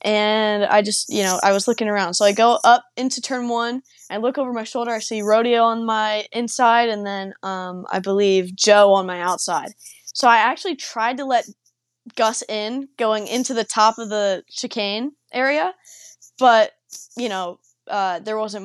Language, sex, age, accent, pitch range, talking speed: English, female, 20-39, American, 200-240 Hz, 185 wpm